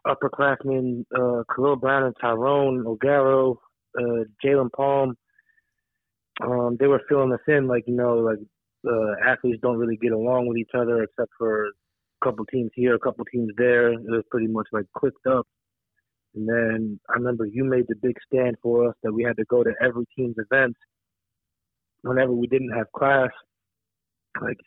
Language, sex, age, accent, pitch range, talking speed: English, male, 30-49, American, 115-130 Hz, 175 wpm